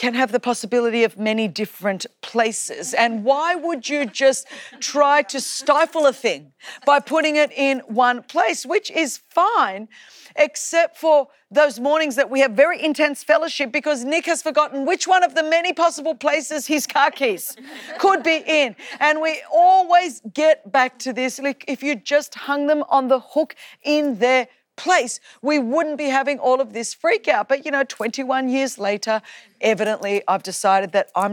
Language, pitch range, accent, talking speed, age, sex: English, 225-305 Hz, Australian, 175 wpm, 40-59, female